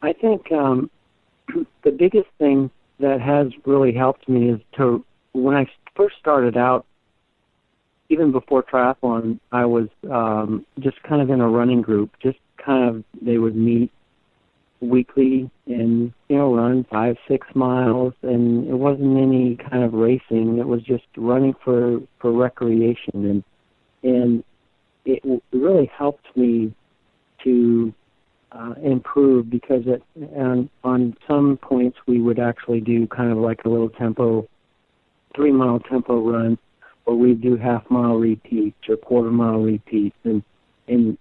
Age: 50-69